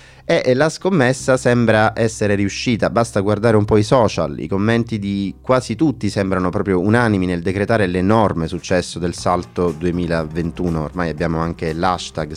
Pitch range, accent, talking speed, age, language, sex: 90-115 Hz, native, 150 wpm, 30-49, Italian, male